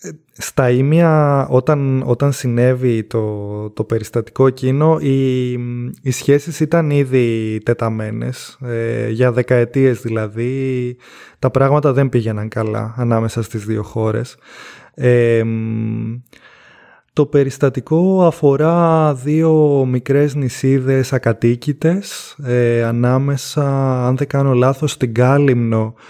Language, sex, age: Greek, male, 20-39